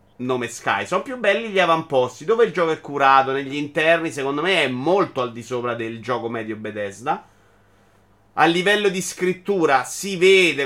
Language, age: Italian, 30-49